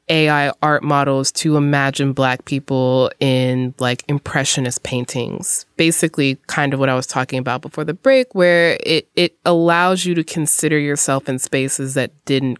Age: 20-39